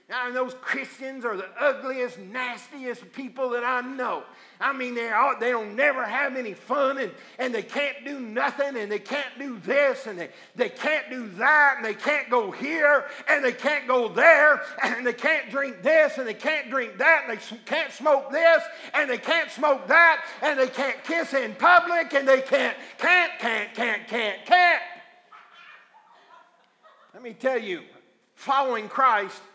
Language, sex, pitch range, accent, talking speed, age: English, male, 240-310 Hz, American, 170 wpm, 50-69